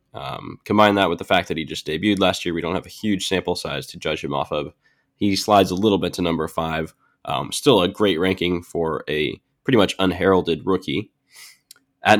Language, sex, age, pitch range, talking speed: English, male, 10-29, 90-105 Hz, 215 wpm